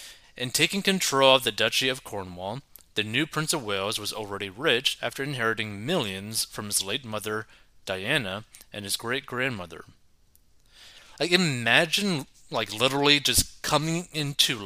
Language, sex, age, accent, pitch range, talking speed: English, male, 30-49, American, 100-135 Hz, 140 wpm